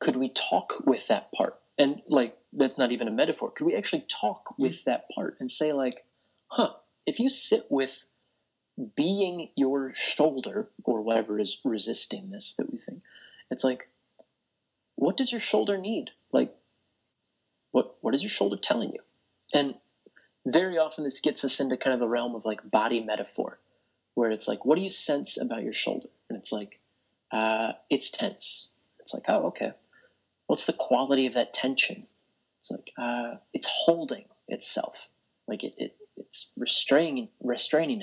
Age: 30-49